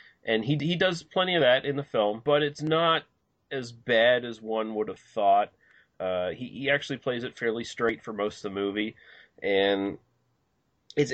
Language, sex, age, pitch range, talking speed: English, male, 30-49, 100-130 Hz, 190 wpm